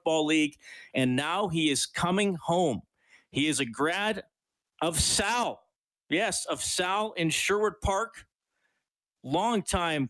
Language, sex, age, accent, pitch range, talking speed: English, male, 40-59, American, 125-170 Hz, 125 wpm